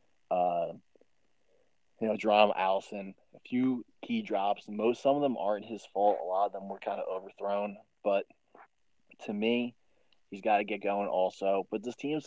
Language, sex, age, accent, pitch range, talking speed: English, male, 20-39, American, 95-110 Hz, 175 wpm